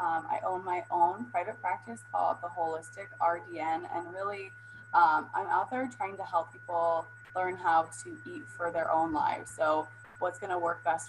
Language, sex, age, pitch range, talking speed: English, female, 20-39, 155-235 Hz, 185 wpm